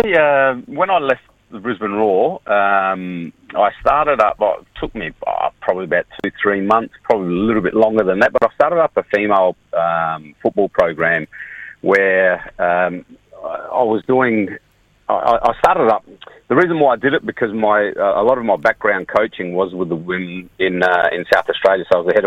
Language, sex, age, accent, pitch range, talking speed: English, male, 30-49, Australian, 90-115 Hz, 200 wpm